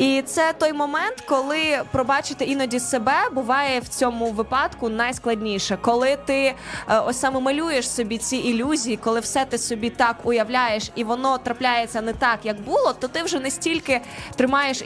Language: Ukrainian